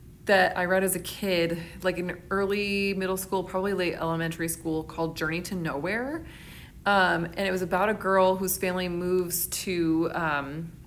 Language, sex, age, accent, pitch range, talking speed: English, female, 20-39, American, 165-190 Hz, 170 wpm